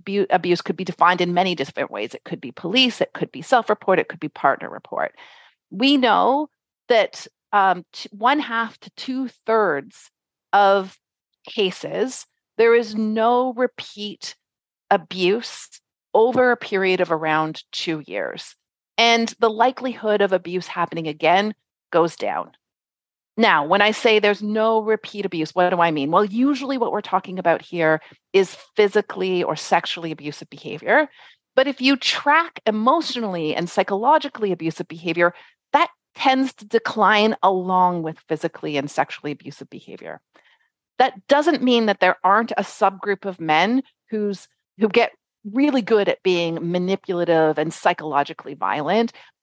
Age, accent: 40-59, American